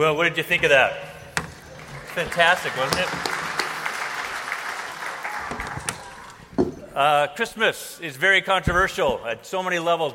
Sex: male